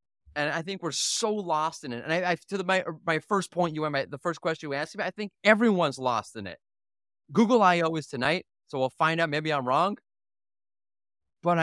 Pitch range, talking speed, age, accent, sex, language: 145-205 Hz, 220 wpm, 30-49, American, male, English